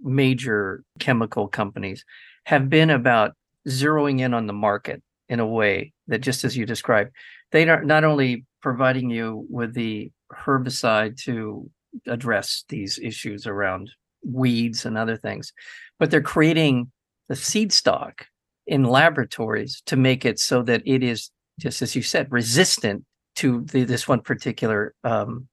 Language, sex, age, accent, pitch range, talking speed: English, male, 50-69, American, 120-140 Hz, 145 wpm